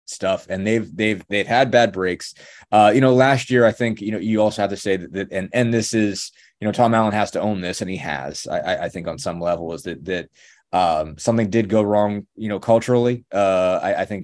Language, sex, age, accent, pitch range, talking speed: English, male, 20-39, American, 90-110 Hz, 255 wpm